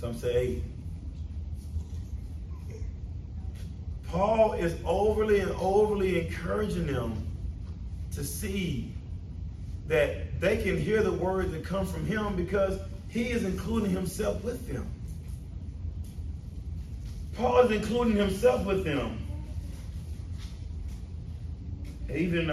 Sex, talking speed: male, 95 wpm